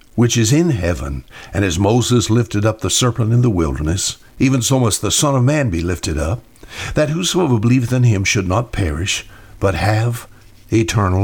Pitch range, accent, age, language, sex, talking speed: 100-130 Hz, American, 60-79, English, male, 185 wpm